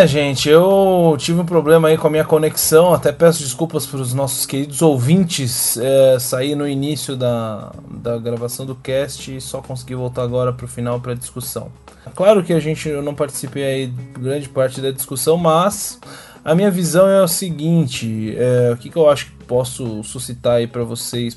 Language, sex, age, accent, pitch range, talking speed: Portuguese, male, 20-39, Brazilian, 120-155 Hz, 190 wpm